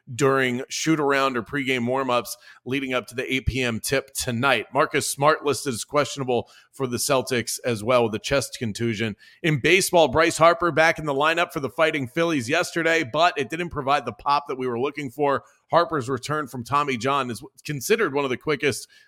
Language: English